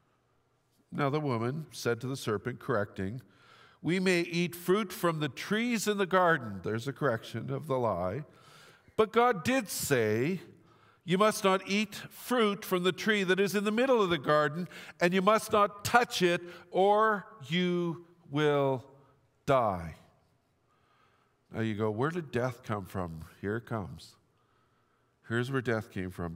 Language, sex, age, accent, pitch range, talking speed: English, male, 50-69, American, 125-180 Hz, 160 wpm